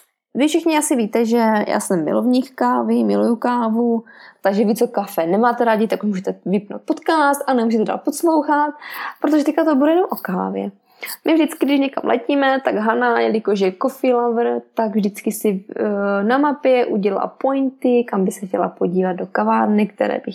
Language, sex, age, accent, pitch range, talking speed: Czech, female, 20-39, native, 195-265 Hz, 175 wpm